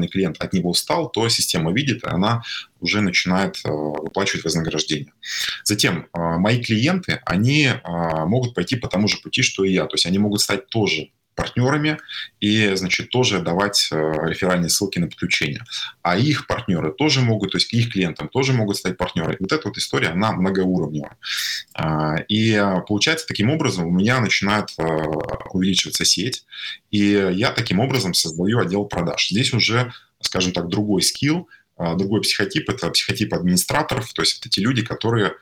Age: 20-39